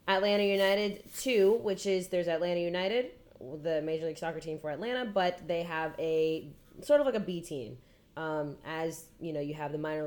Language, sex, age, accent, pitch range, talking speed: English, female, 20-39, American, 155-195 Hz, 195 wpm